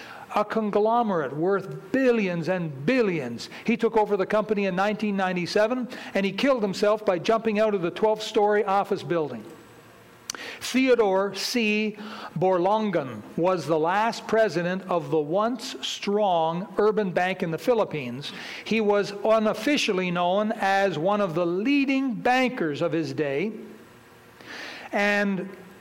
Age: 60-79